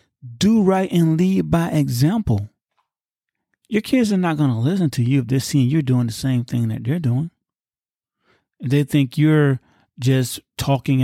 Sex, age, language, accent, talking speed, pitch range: male, 30-49, English, American, 170 wpm, 125-180 Hz